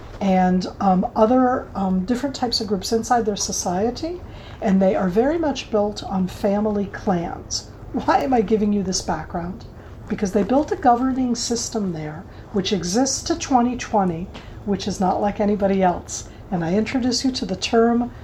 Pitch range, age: 185-240 Hz, 50-69